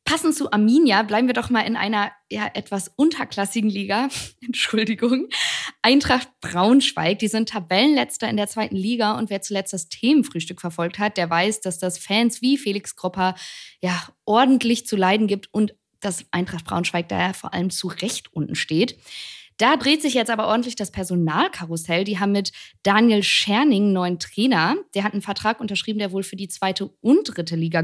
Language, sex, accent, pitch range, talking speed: German, female, German, 185-235 Hz, 175 wpm